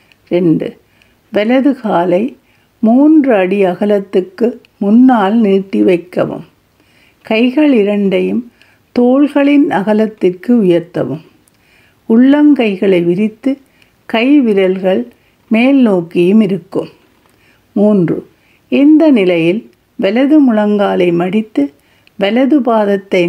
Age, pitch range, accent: 60-79, 185-250 Hz, native